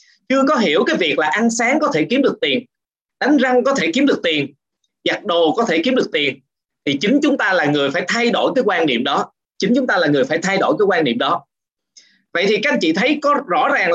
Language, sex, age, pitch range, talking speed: Vietnamese, male, 20-39, 200-265 Hz, 265 wpm